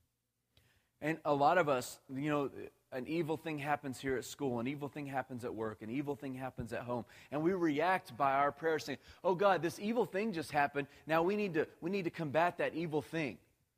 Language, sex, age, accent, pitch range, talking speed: English, male, 30-49, American, 125-160 Hz, 215 wpm